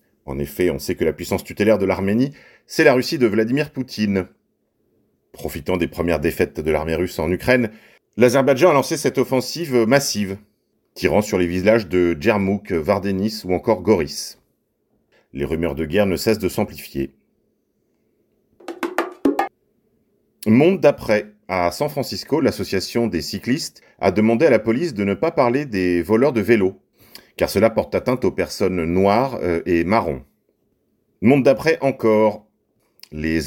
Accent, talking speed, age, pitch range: French, 150 wpm, 40-59, 95-130 Hz